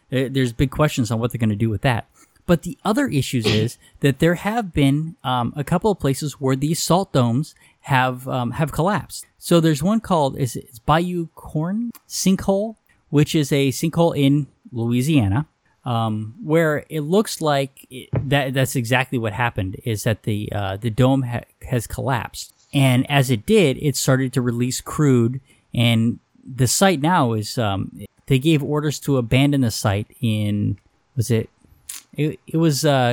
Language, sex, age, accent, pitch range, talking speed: English, male, 20-39, American, 120-155 Hz, 180 wpm